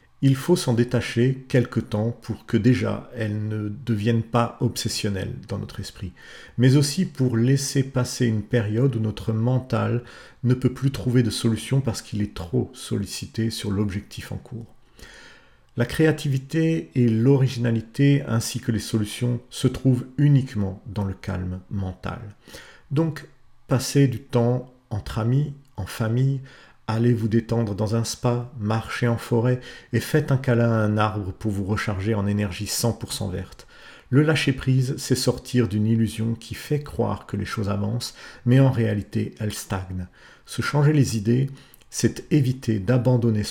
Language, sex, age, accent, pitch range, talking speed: French, male, 50-69, French, 105-130 Hz, 155 wpm